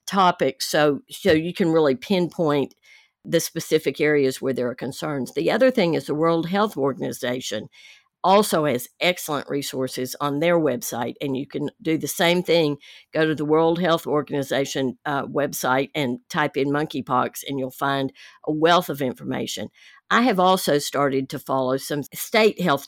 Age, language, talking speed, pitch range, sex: 50-69, English, 170 wpm, 135-165 Hz, female